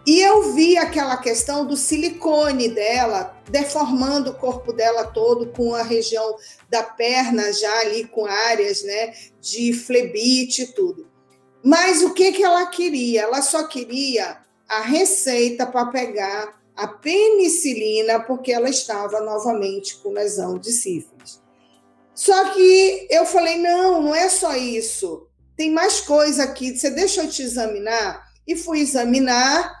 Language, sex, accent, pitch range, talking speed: Portuguese, female, Brazilian, 230-315 Hz, 145 wpm